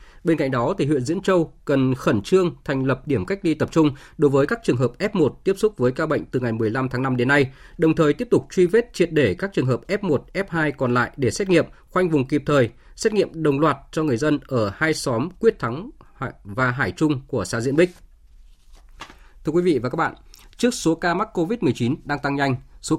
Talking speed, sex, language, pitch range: 245 wpm, male, Vietnamese, 130-170 Hz